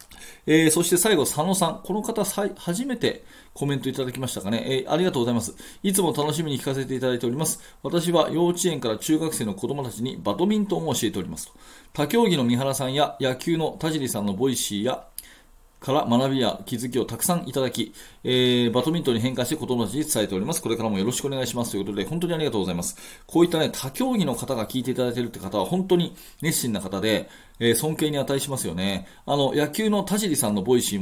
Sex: male